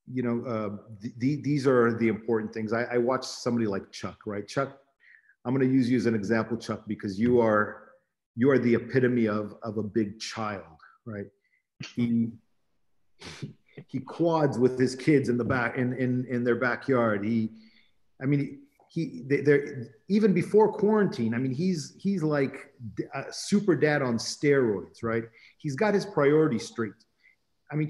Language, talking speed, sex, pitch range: English, 175 wpm, male, 115-140 Hz